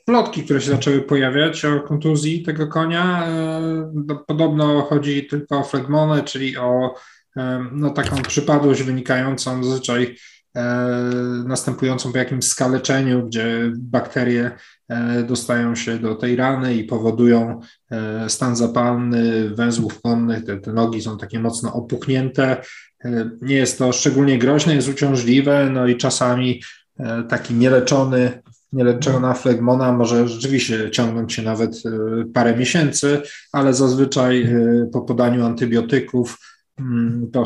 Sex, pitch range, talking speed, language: male, 120-140 Hz, 115 wpm, Polish